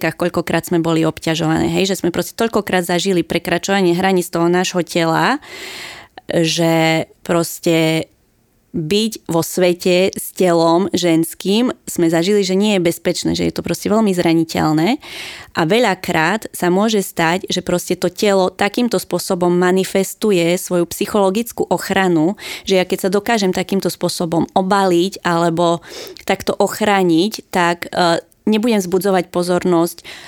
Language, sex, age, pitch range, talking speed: Slovak, female, 20-39, 170-190 Hz, 130 wpm